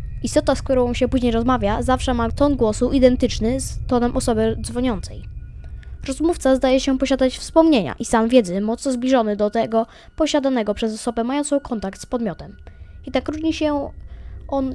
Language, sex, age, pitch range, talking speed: Polish, female, 10-29, 225-275 Hz, 160 wpm